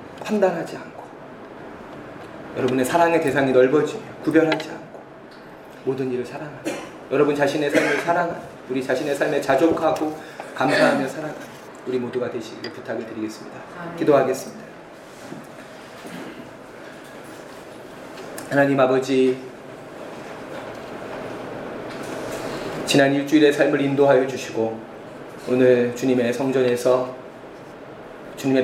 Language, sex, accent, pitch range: Korean, male, native, 125-145 Hz